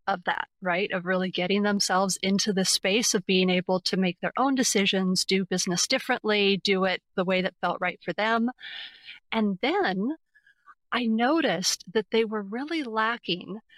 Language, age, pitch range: English, 30-49, 185-235 Hz